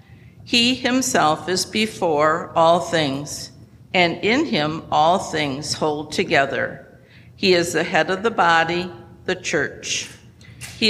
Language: English